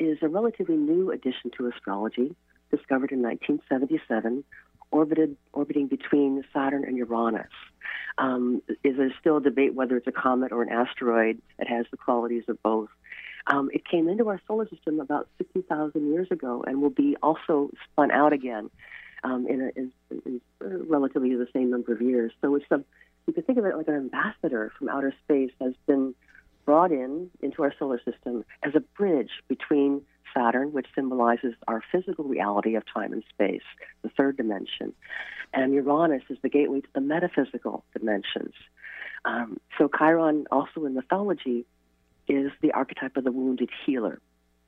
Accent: American